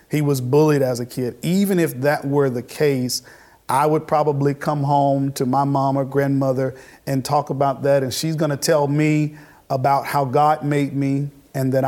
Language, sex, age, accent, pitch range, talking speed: English, male, 50-69, American, 140-170 Hz, 195 wpm